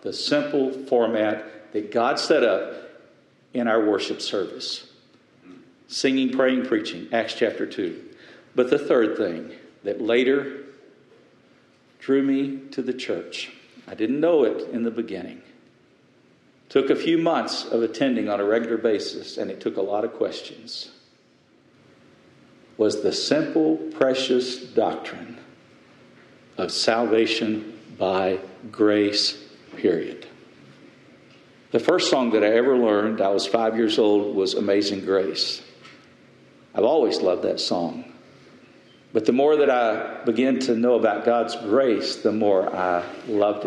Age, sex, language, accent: 50-69, male, English, American